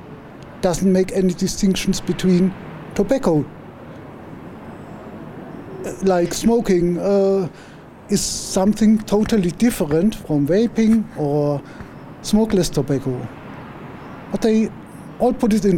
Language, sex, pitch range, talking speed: English, male, 150-190 Hz, 90 wpm